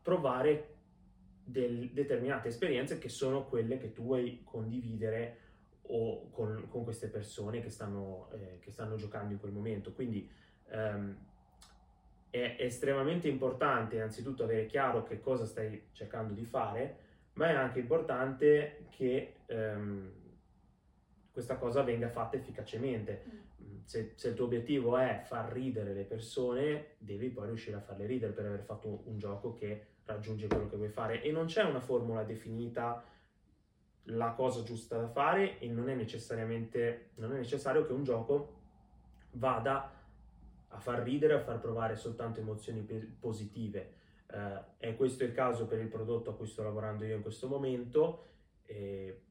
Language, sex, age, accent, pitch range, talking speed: Italian, male, 20-39, native, 105-130 Hz, 155 wpm